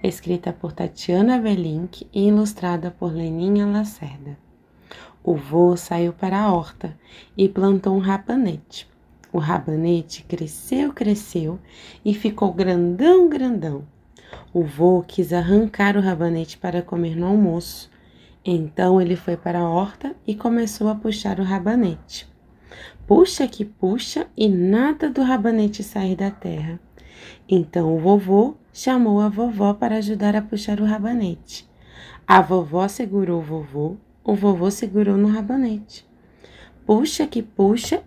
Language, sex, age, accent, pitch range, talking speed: Portuguese, female, 20-39, Brazilian, 170-215 Hz, 130 wpm